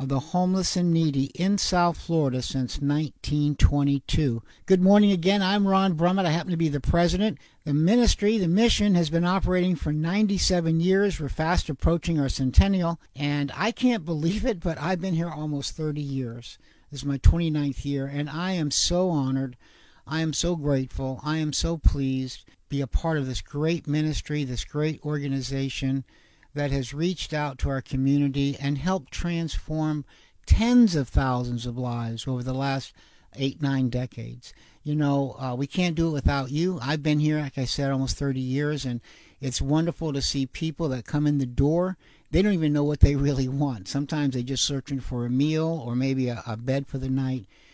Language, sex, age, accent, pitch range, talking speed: English, male, 60-79, American, 135-165 Hz, 190 wpm